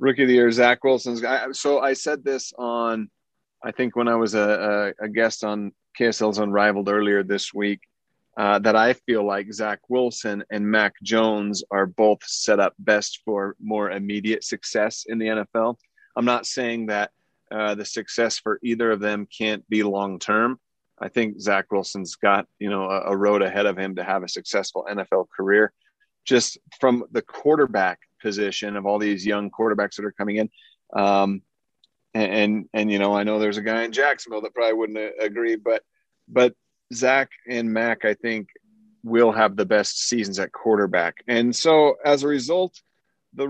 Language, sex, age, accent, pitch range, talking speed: English, male, 30-49, American, 105-125 Hz, 185 wpm